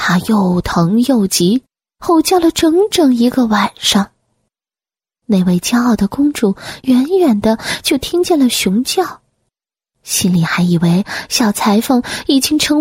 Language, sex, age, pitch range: Chinese, female, 20-39, 195-300 Hz